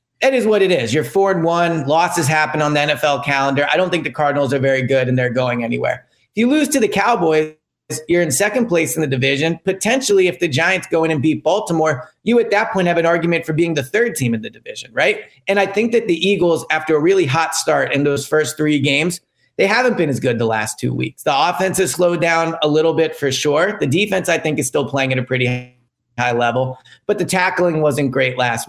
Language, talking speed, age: English, 245 wpm, 30-49